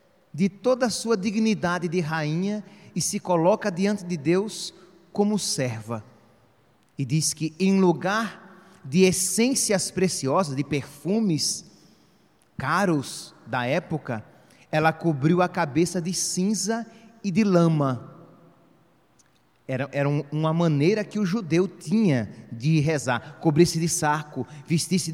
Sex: male